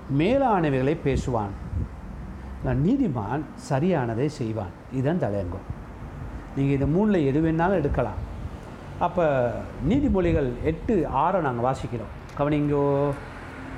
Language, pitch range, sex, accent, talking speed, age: Tamil, 105-165 Hz, male, native, 85 wpm, 60-79